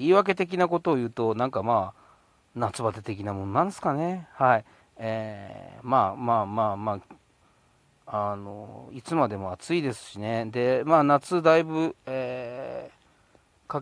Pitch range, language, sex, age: 105-130 Hz, Japanese, male, 40-59